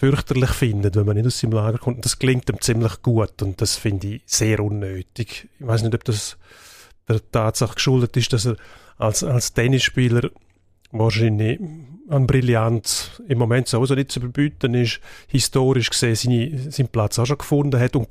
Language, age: German, 30-49